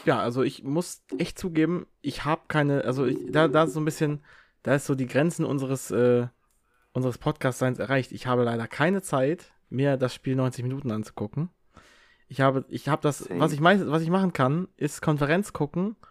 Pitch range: 110-145 Hz